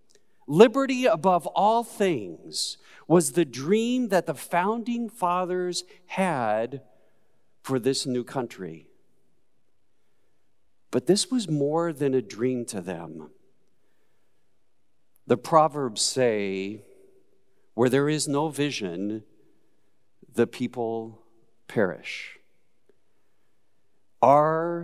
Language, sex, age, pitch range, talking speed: English, male, 50-69, 110-180 Hz, 90 wpm